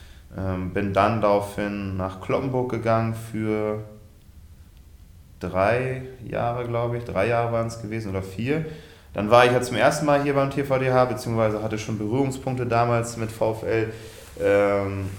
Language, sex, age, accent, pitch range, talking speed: German, male, 20-39, German, 95-110 Hz, 150 wpm